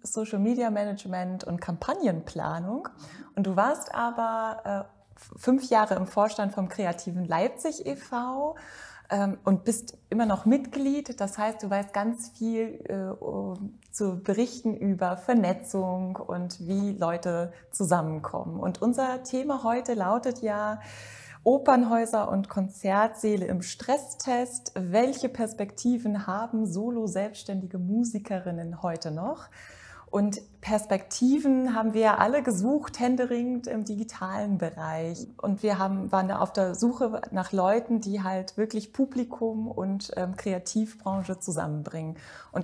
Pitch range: 185-235 Hz